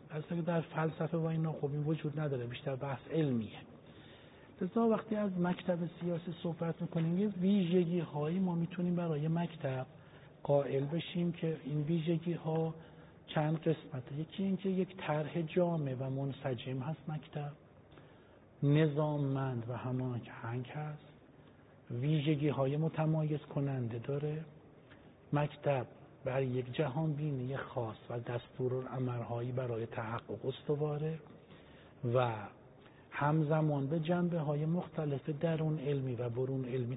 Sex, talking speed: male, 115 wpm